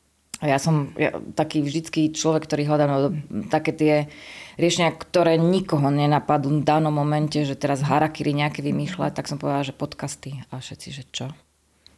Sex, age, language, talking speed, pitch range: female, 20-39, Slovak, 160 wpm, 145-160 Hz